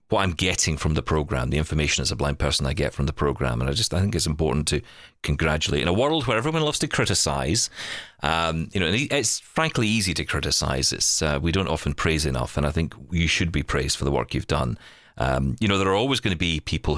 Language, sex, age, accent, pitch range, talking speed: English, male, 30-49, British, 75-105 Hz, 245 wpm